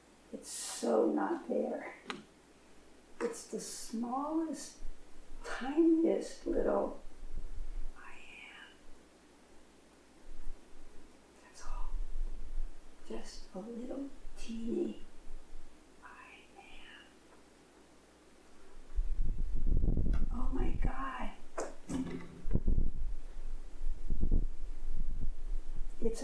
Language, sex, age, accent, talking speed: English, female, 50-69, American, 55 wpm